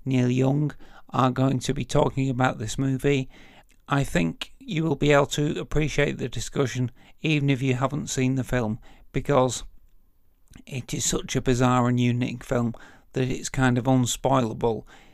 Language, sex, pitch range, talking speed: English, male, 120-135 Hz, 165 wpm